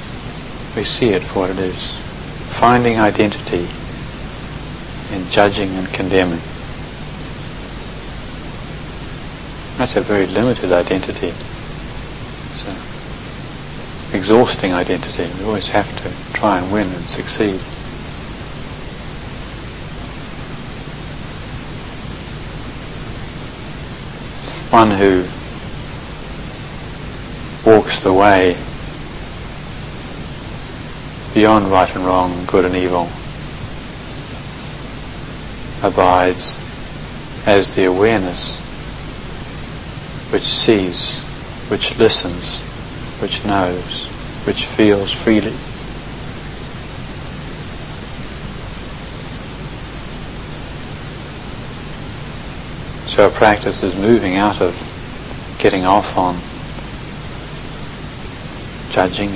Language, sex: English, male